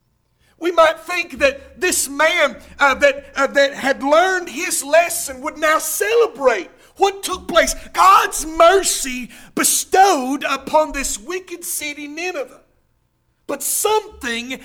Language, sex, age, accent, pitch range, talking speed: English, male, 50-69, American, 265-335 Hz, 125 wpm